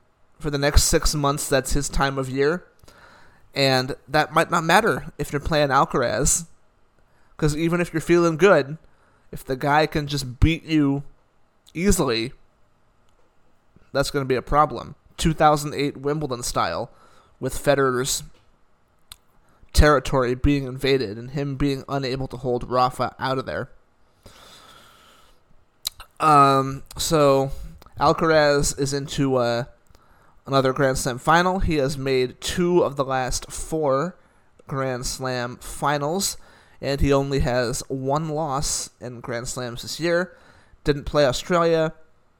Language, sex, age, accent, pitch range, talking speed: English, male, 20-39, American, 125-150 Hz, 130 wpm